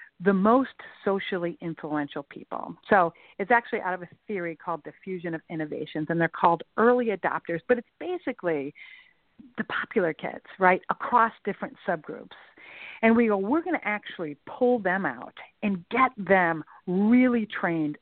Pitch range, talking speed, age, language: 165-220 Hz, 155 wpm, 50-69, English